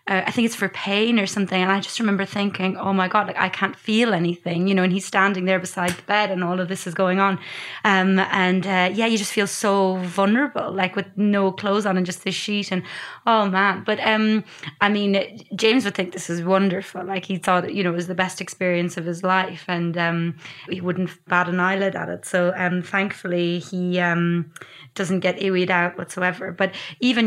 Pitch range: 180-200 Hz